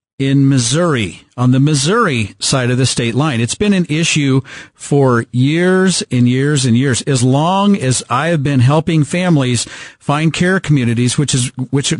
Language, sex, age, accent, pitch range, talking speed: English, male, 50-69, American, 130-160 Hz, 170 wpm